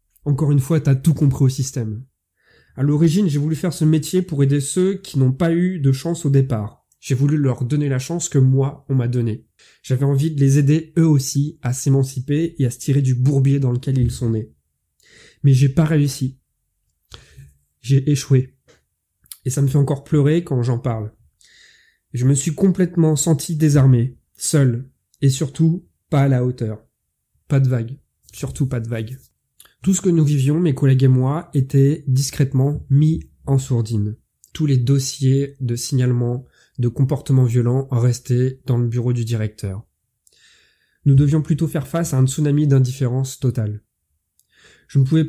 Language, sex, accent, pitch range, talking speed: French, male, French, 125-150 Hz, 175 wpm